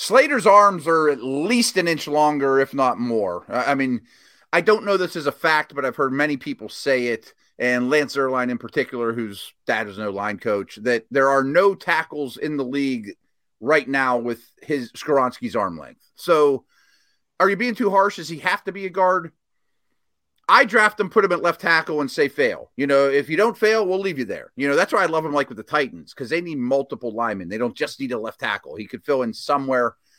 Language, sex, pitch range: English, male, 125-170 Hz